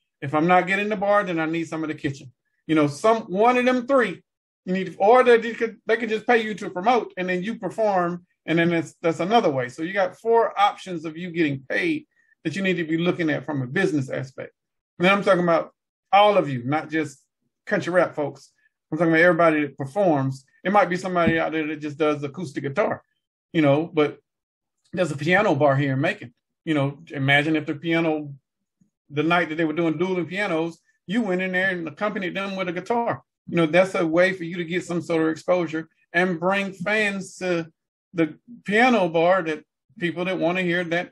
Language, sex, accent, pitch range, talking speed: English, male, American, 155-195 Hz, 225 wpm